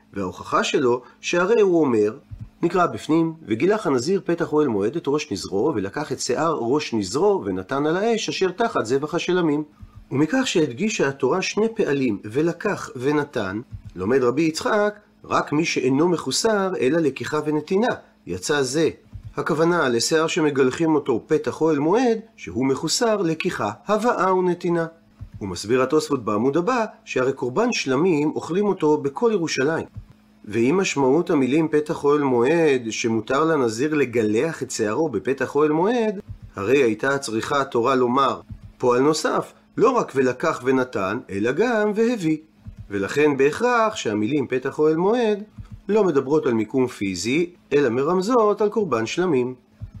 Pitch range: 120-175 Hz